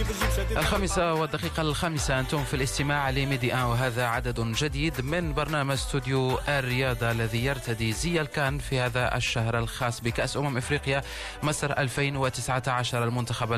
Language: Arabic